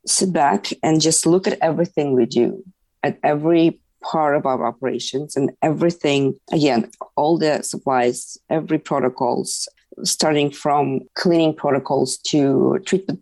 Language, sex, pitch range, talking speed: English, female, 135-175 Hz, 130 wpm